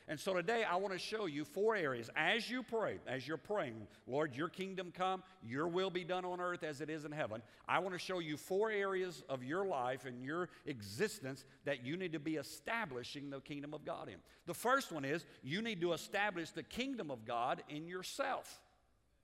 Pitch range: 140-185 Hz